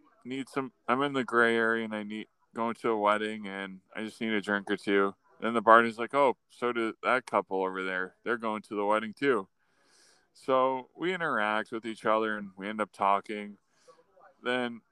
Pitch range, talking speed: 100-125 Hz, 205 wpm